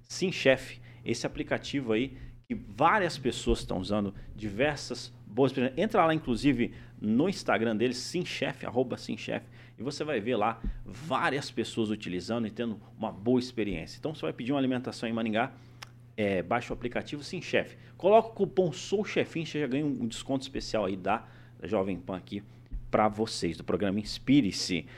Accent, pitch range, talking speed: Brazilian, 115-140 Hz, 160 wpm